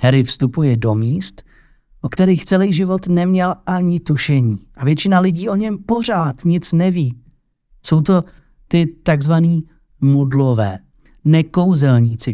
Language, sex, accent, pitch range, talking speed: Czech, male, native, 135-175 Hz, 120 wpm